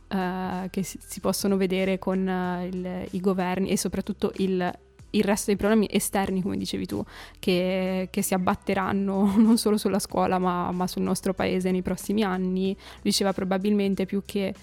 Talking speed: 160 wpm